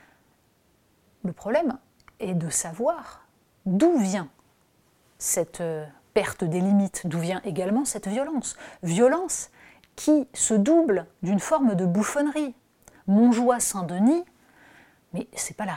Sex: female